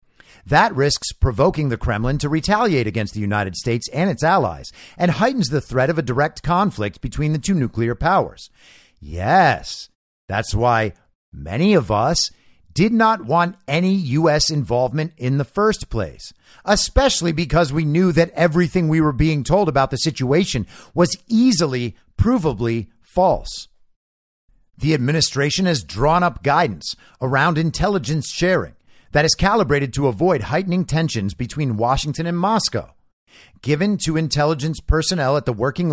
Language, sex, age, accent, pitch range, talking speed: English, male, 50-69, American, 125-170 Hz, 145 wpm